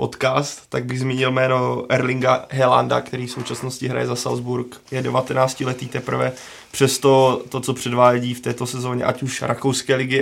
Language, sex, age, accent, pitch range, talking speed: Czech, male, 20-39, native, 120-130 Hz, 170 wpm